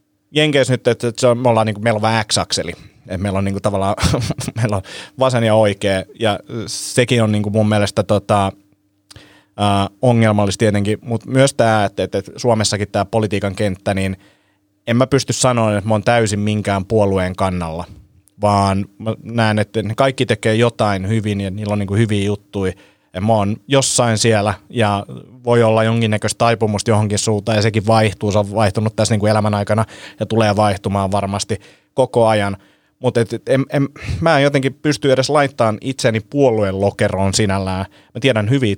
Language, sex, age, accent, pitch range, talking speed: Finnish, male, 30-49, native, 100-115 Hz, 175 wpm